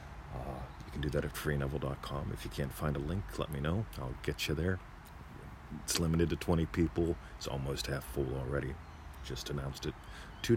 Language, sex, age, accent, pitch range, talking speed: English, male, 40-59, American, 75-95 Hz, 195 wpm